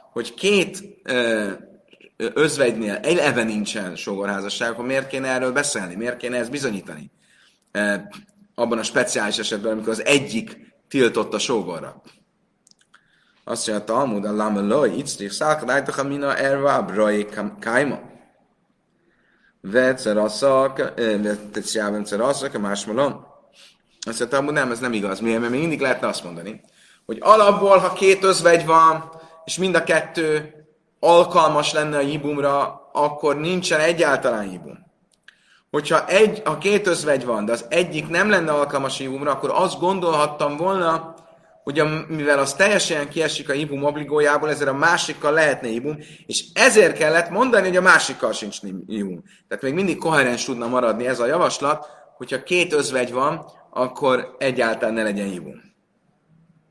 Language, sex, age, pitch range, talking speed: Hungarian, male, 30-49, 120-165 Hz, 135 wpm